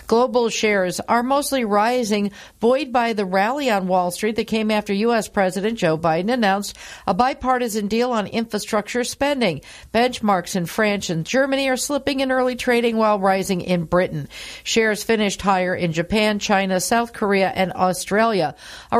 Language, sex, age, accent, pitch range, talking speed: English, female, 50-69, American, 190-230 Hz, 160 wpm